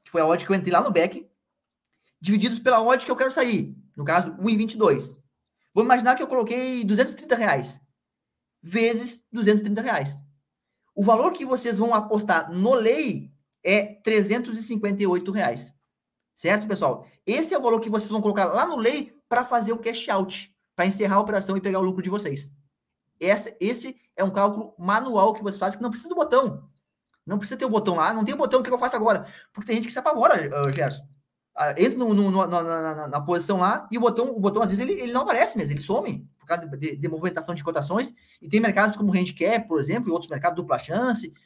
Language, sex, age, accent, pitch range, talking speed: Portuguese, male, 20-39, Brazilian, 170-235 Hz, 215 wpm